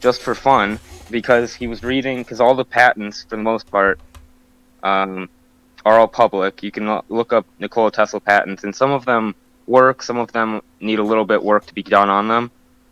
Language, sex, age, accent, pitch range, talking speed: English, male, 20-39, American, 105-130 Hz, 215 wpm